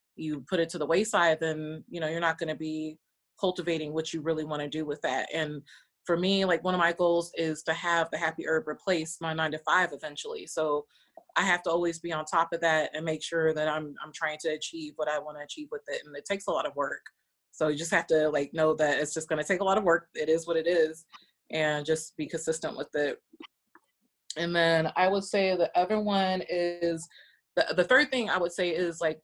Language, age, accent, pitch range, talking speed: English, 30-49, American, 160-195 Hz, 250 wpm